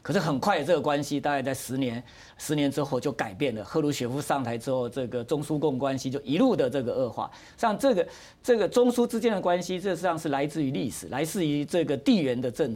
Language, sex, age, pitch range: Chinese, male, 50-69, 130-165 Hz